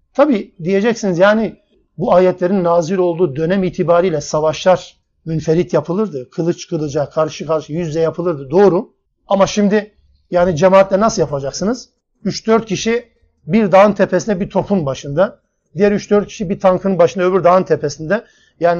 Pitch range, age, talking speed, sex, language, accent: 175-210 Hz, 50-69, 135 wpm, male, Turkish, native